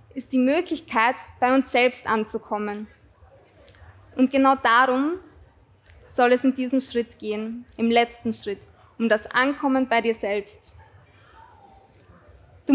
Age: 20-39